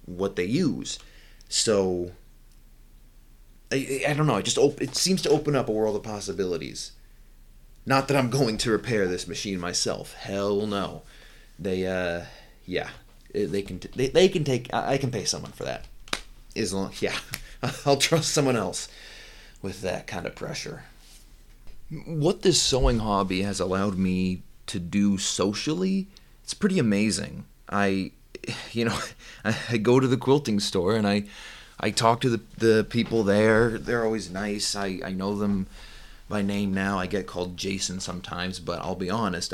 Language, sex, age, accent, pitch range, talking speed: English, male, 30-49, American, 95-125 Hz, 165 wpm